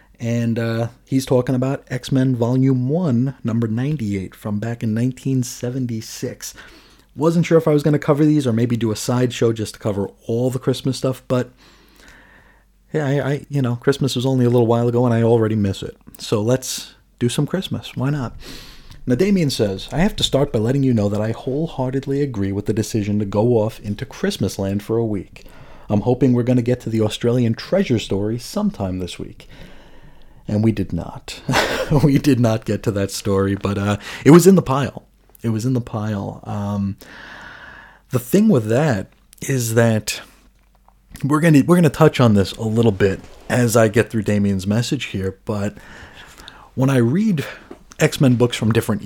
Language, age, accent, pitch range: English, 30-49, American, 105-135 Hz